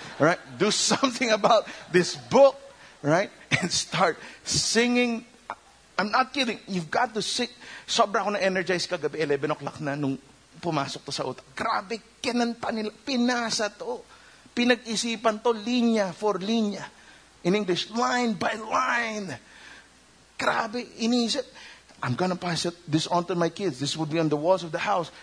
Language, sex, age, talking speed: English, male, 50-69, 145 wpm